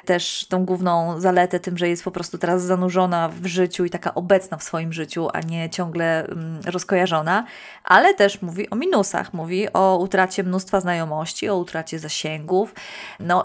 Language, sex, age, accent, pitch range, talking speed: Polish, female, 20-39, native, 185-215 Hz, 165 wpm